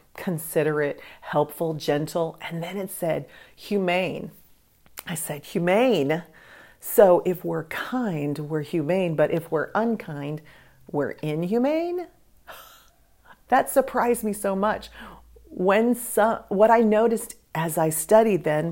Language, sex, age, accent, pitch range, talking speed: English, female, 40-59, American, 160-215 Hz, 120 wpm